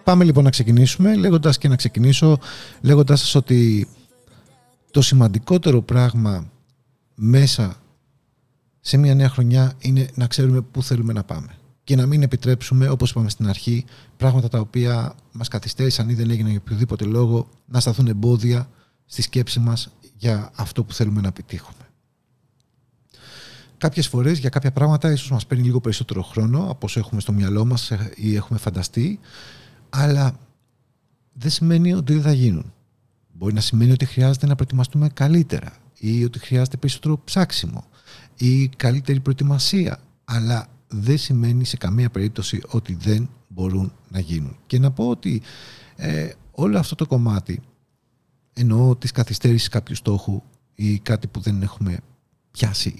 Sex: male